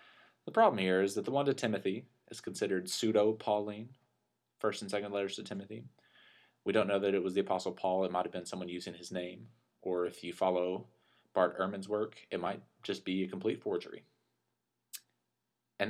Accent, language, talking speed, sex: American, English, 190 wpm, male